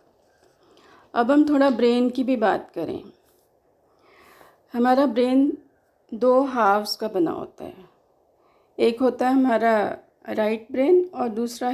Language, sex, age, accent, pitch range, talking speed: Hindi, female, 40-59, native, 235-290 Hz, 125 wpm